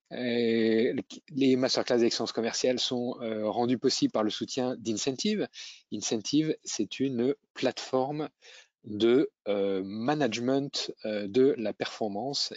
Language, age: French, 20-39